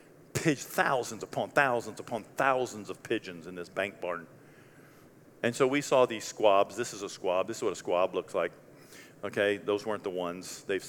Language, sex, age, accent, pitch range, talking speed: English, male, 50-69, American, 95-110 Hz, 195 wpm